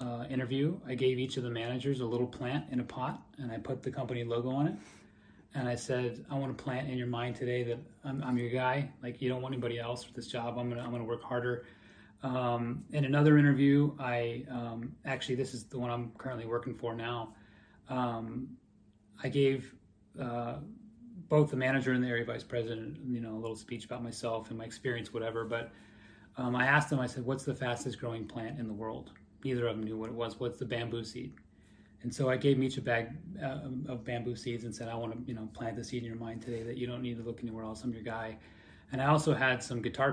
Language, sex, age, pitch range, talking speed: English, male, 30-49, 115-130 Hz, 240 wpm